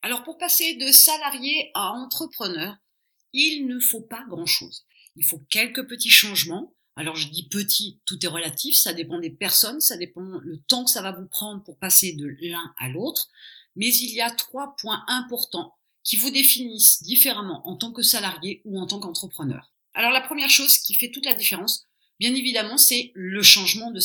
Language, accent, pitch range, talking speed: French, French, 175-255 Hz, 190 wpm